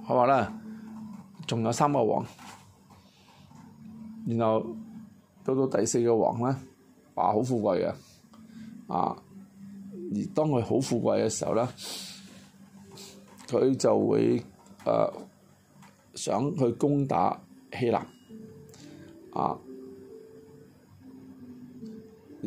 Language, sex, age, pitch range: Chinese, male, 20-39, 145-230 Hz